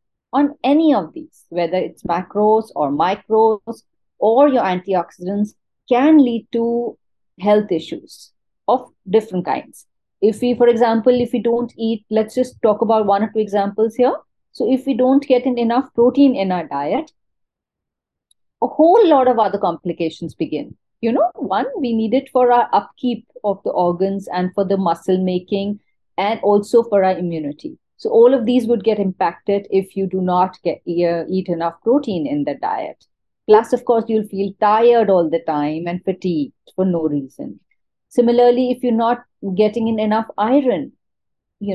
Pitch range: 185-240 Hz